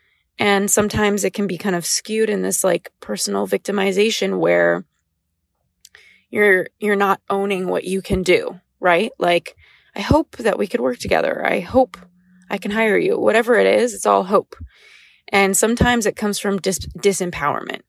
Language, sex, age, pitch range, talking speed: English, female, 20-39, 180-220 Hz, 170 wpm